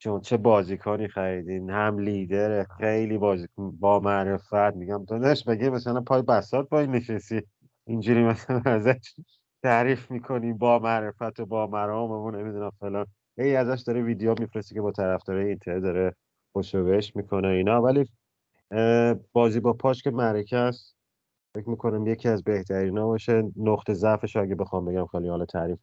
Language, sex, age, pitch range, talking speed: Persian, male, 30-49, 95-115 Hz, 160 wpm